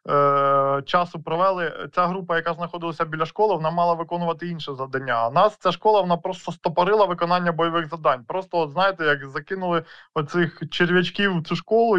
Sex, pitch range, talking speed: male, 145-180 Hz, 165 wpm